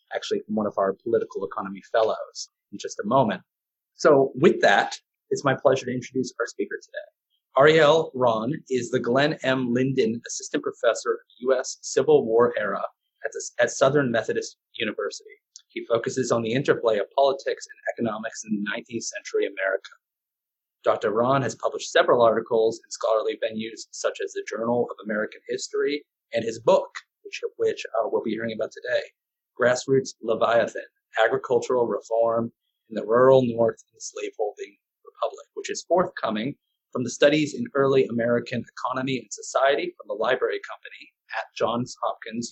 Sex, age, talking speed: male, 30-49, 160 wpm